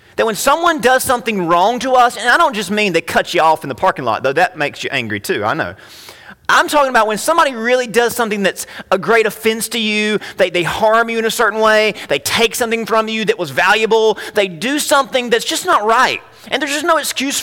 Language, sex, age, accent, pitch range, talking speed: English, male, 30-49, American, 175-250 Hz, 245 wpm